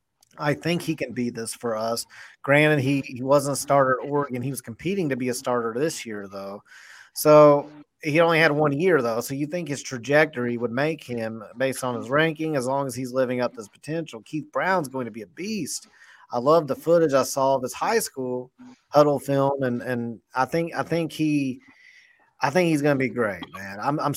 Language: English